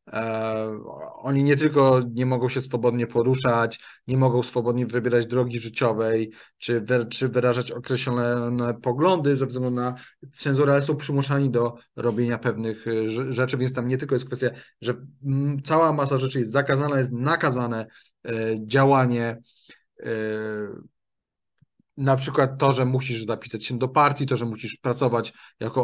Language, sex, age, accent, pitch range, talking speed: Polish, male, 30-49, native, 120-145 Hz, 135 wpm